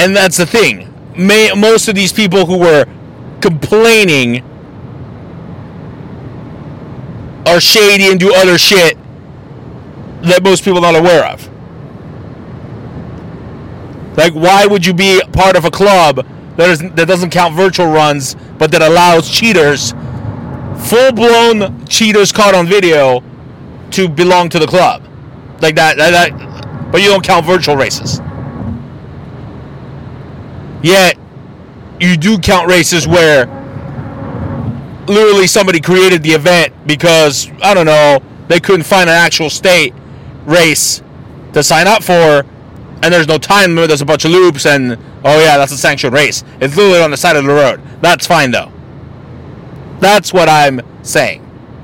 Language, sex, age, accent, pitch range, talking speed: English, male, 30-49, American, 145-190 Hz, 140 wpm